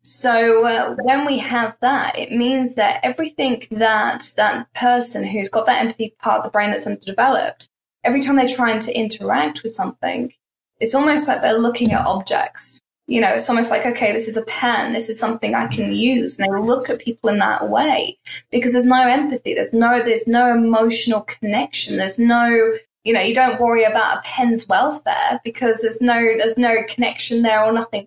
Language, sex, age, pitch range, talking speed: English, female, 10-29, 225-255 Hz, 195 wpm